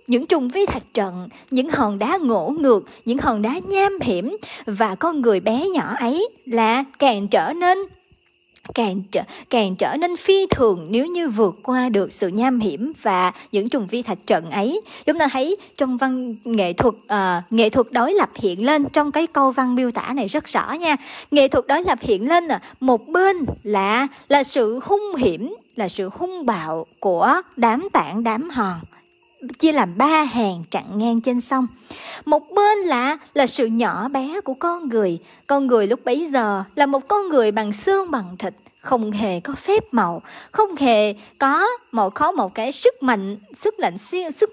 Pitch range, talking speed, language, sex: 225-335 Hz, 195 wpm, Vietnamese, male